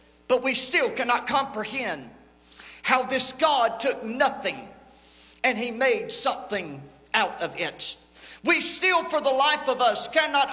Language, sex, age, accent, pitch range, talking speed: English, male, 40-59, American, 215-330 Hz, 140 wpm